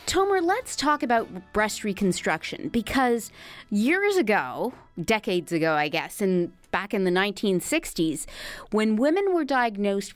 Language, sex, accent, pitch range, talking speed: English, female, American, 185-245 Hz, 130 wpm